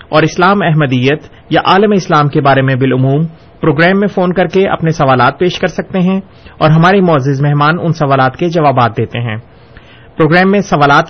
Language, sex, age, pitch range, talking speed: Urdu, male, 30-49, 145-175 Hz, 185 wpm